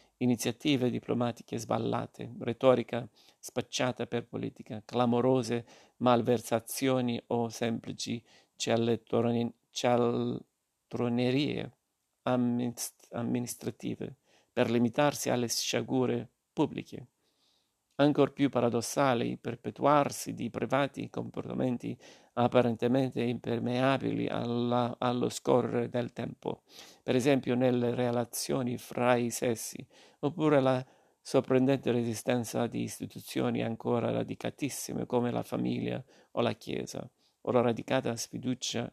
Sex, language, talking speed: male, Italian, 90 wpm